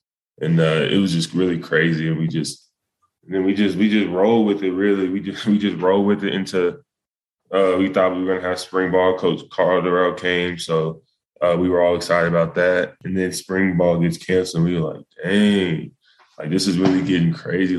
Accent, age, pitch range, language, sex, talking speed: American, 10-29, 85-95 Hz, English, male, 225 wpm